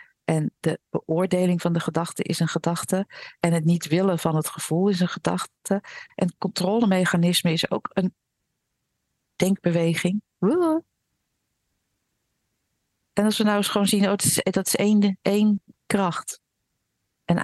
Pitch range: 150-195 Hz